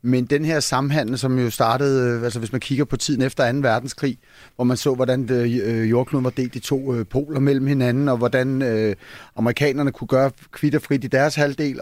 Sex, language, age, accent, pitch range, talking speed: male, Danish, 30-49, native, 130-155 Hz, 190 wpm